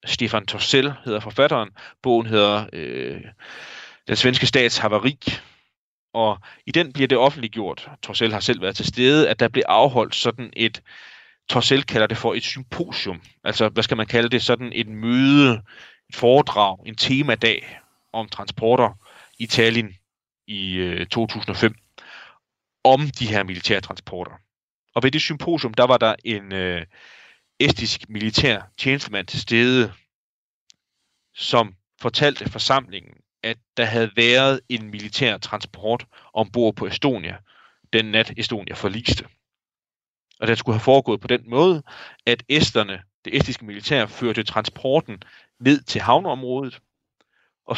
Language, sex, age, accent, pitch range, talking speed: Danish, male, 30-49, native, 105-130 Hz, 135 wpm